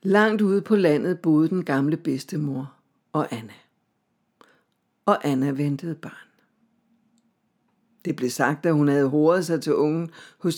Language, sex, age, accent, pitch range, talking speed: Danish, female, 60-79, native, 155-205 Hz, 140 wpm